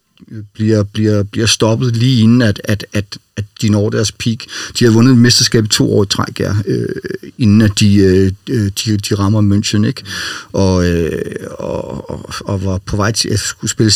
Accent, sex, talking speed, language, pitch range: native, male, 190 wpm, Danish, 100-115 Hz